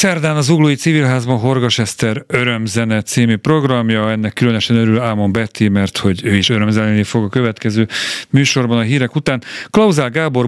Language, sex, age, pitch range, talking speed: Hungarian, male, 40-59, 105-130 Hz, 160 wpm